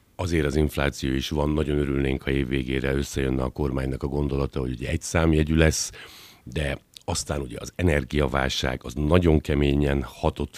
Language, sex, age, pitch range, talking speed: Hungarian, male, 60-79, 70-85 Hz, 165 wpm